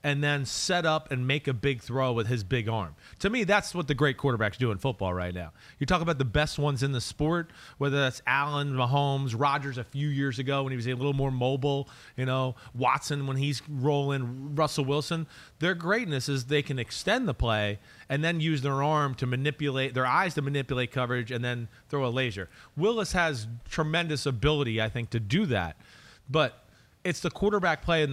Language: English